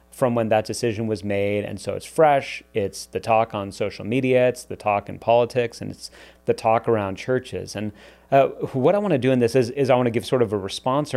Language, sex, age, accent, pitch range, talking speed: English, male, 30-49, American, 105-125 Hz, 235 wpm